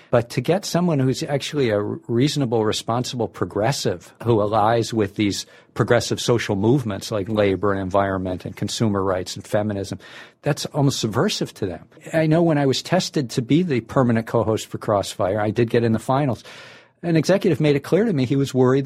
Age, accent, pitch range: 50-69, American, 105-145 Hz